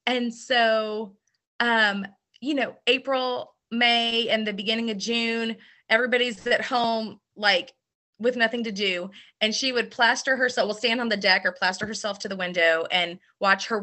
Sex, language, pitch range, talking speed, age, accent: female, English, 180-230 Hz, 170 wpm, 30-49, American